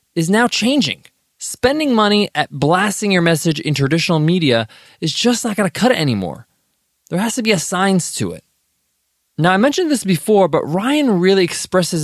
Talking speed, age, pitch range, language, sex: 180 wpm, 20-39, 150-230 Hz, English, male